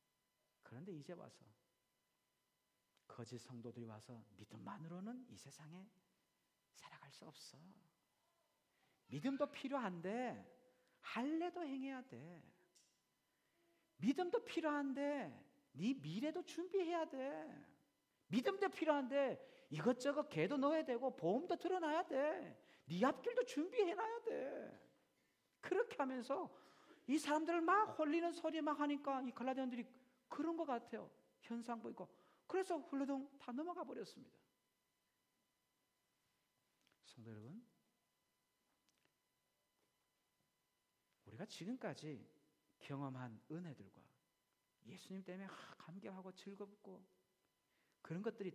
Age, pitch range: 50-69, 190-300 Hz